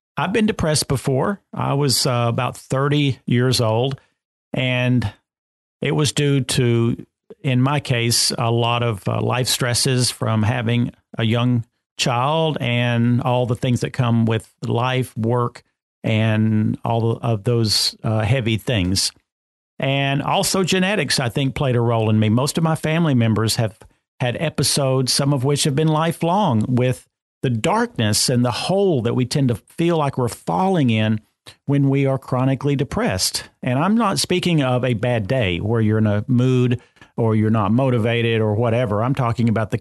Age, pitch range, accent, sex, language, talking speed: 50-69, 115-140 Hz, American, male, English, 170 wpm